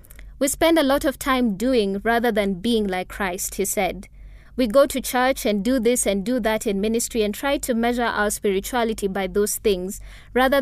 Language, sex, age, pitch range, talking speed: English, female, 20-39, 205-255 Hz, 205 wpm